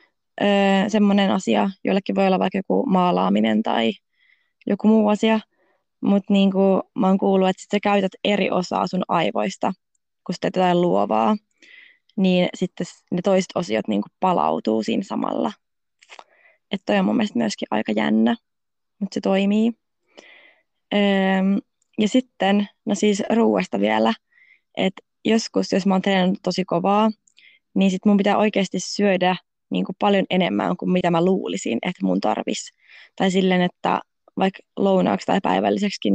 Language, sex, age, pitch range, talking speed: Finnish, female, 20-39, 175-205 Hz, 140 wpm